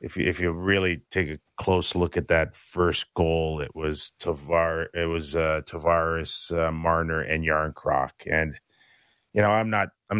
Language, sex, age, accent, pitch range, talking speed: English, male, 30-49, American, 80-95 Hz, 175 wpm